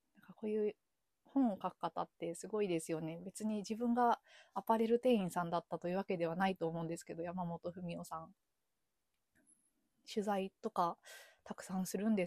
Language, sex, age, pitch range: Japanese, female, 20-39, 175-225 Hz